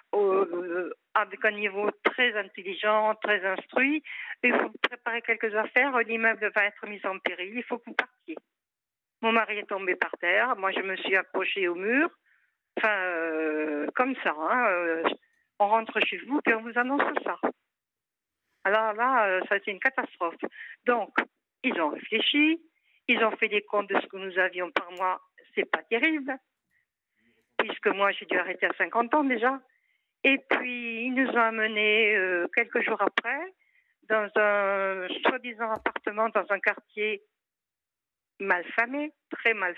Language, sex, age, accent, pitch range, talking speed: French, female, 60-79, French, 200-265 Hz, 160 wpm